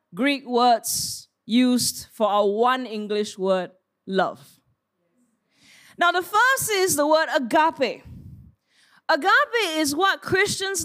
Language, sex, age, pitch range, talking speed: English, female, 20-39, 255-345 Hz, 110 wpm